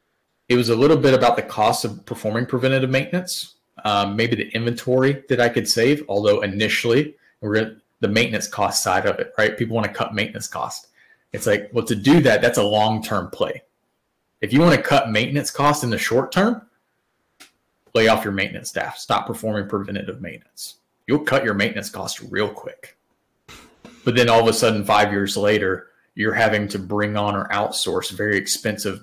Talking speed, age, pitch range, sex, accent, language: 190 wpm, 30-49, 105-130 Hz, male, American, German